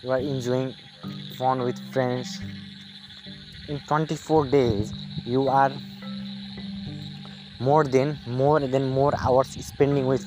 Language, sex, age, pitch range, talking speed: English, male, 20-39, 120-155 Hz, 110 wpm